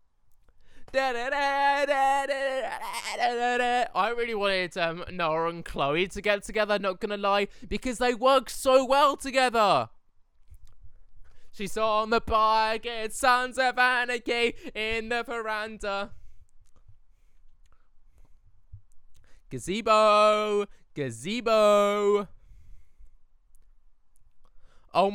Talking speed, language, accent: 80 wpm, English, British